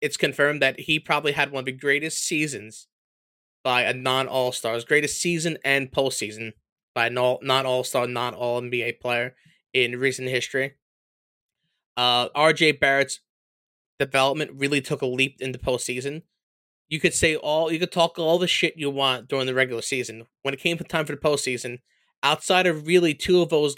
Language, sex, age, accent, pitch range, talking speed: English, male, 20-39, American, 125-160 Hz, 180 wpm